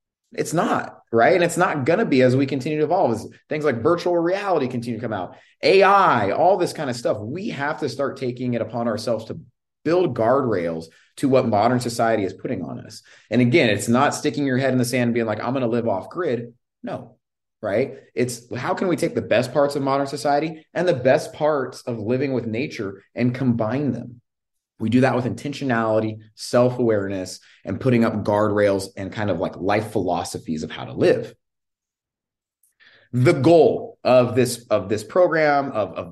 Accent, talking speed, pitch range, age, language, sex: American, 200 wpm, 110-145 Hz, 30-49, English, male